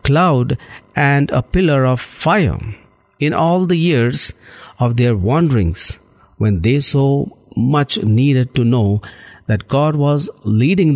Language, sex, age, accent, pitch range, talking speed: English, male, 50-69, Indian, 115-150 Hz, 130 wpm